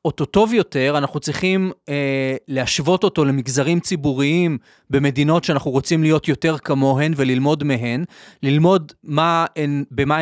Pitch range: 140-195 Hz